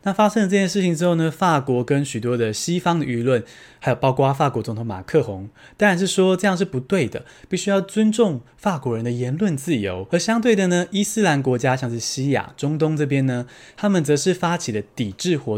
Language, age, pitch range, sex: Chinese, 20-39, 125-180 Hz, male